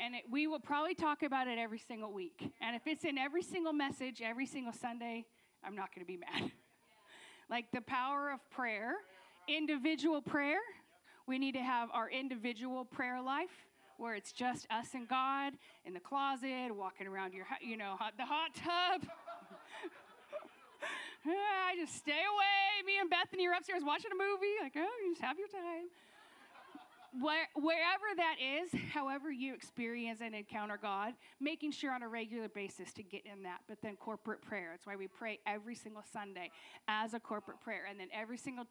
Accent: American